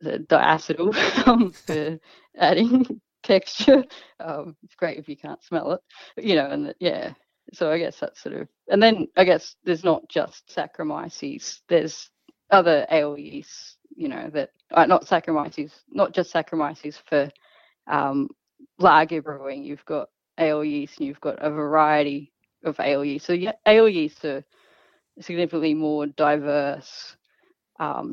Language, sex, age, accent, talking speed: English, female, 30-49, Australian, 145 wpm